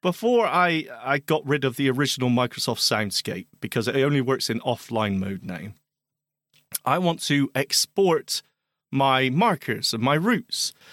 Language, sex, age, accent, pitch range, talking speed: English, male, 30-49, British, 125-175 Hz, 150 wpm